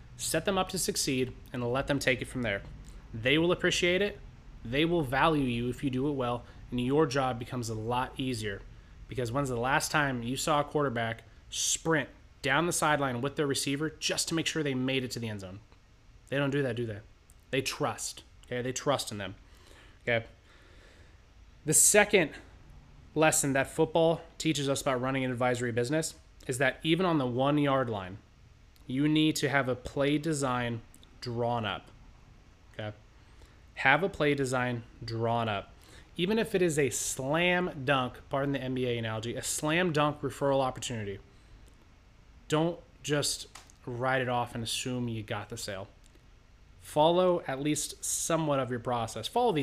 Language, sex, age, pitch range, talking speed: English, male, 20-39, 115-145 Hz, 175 wpm